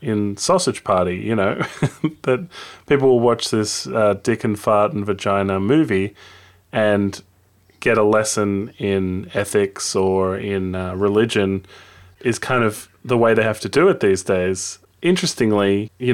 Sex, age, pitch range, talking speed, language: male, 20-39, 95-115 Hz, 150 wpm, English